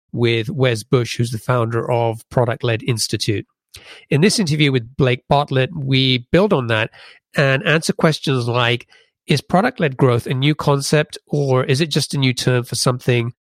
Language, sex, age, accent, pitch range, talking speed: English, male, 30-49, British, 125-150 Hz, 170 wpm